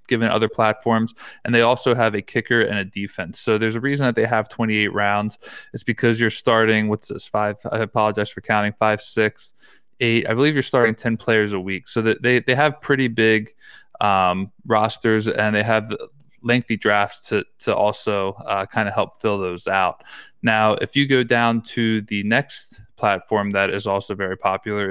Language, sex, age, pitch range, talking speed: English, male, 20-39, 105-115 Hz, 195 wpm